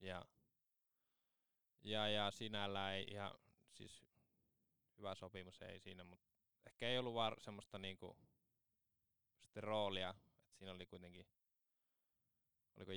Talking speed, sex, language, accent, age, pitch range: 100 wpm, male, Finnish, native, 20-39, 90-105 Hz